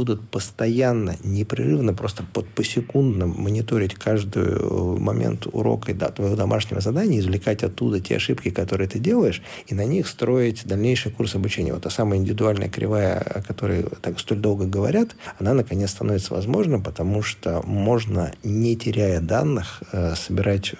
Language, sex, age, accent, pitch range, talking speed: Russian, male, 50-69, native, 100-125 Hz, 145 wpm